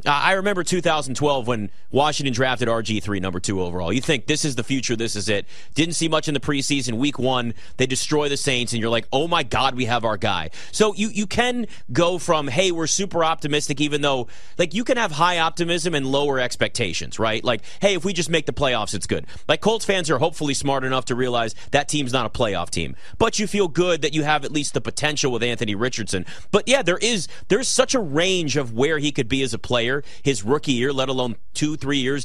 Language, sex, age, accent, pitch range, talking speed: English, male, 30-49, American, 125-170 Hz, 235 wpm